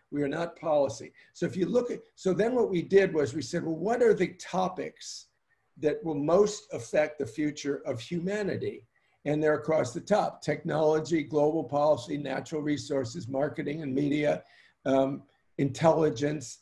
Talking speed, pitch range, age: 165 wpm, 140-170 Hz, 50-69